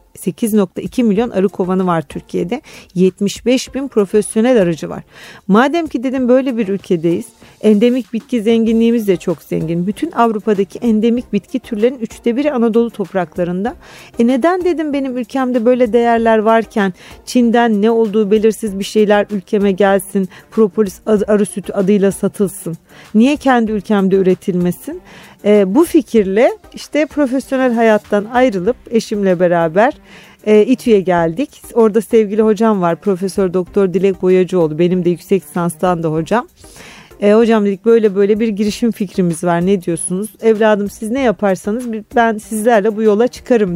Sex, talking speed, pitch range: female, 140 wpm, 185-240 Hz